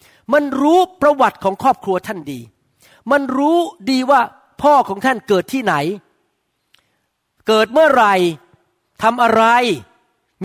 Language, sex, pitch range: Thai, male, 190-275 Hz